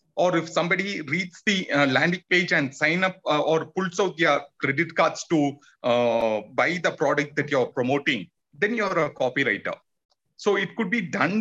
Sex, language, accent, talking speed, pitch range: male, Hindi, native, 180 wpm, 140-195 Hz